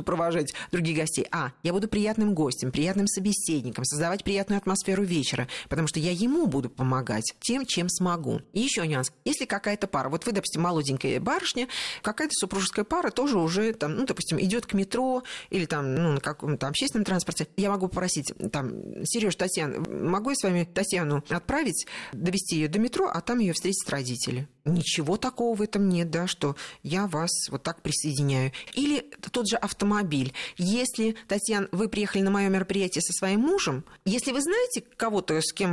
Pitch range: 155-210 Hz